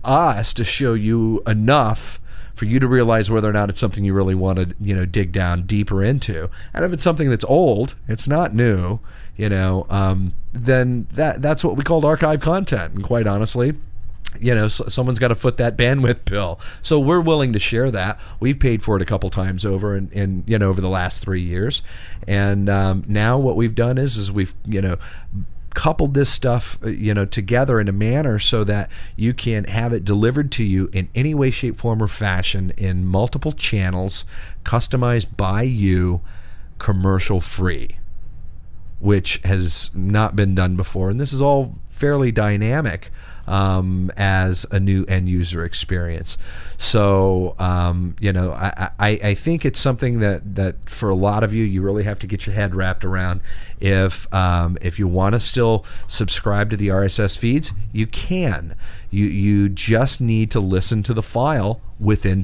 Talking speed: 185 wpm